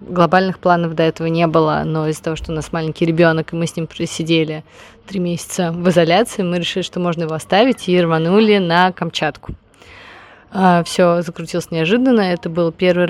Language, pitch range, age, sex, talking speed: Russian, 165-185 Hz, 20-39, female, 180 wpm